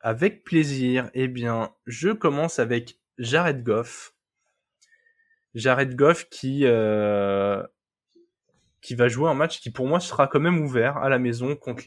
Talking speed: 145 wpm